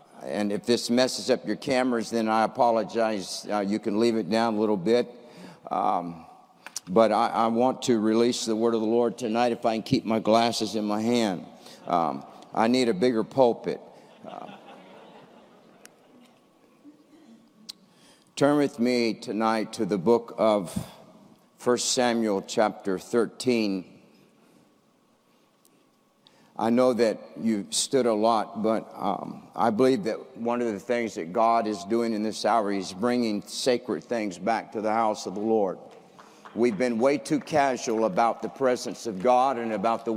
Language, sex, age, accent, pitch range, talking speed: English, male, 60-79, American, 110-125 Hz, 160 wpm